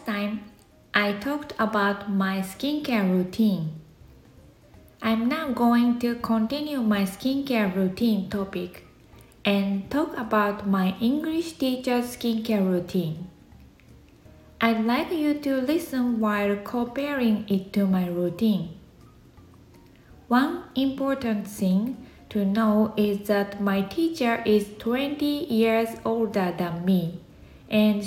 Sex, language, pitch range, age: female, Japanese, 200-260 Hz, 20-39